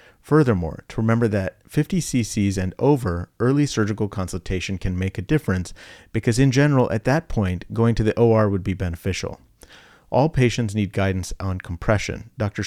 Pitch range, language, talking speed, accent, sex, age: 95-120 Hz, English, 165 wpm, American, male, 40-59